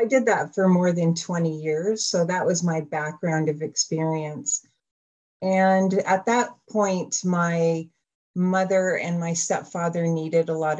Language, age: English, 40-59